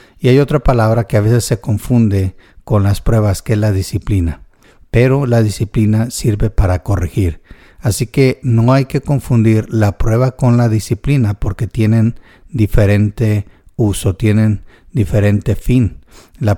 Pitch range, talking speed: 100-120 Hz, 150 wpm